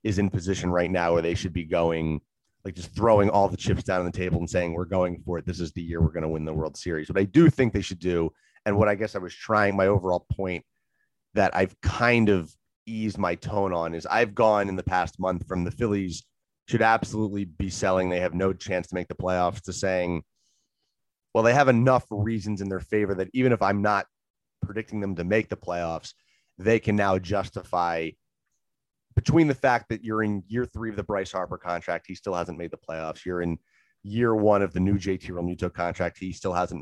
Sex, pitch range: male, 90-105 Hz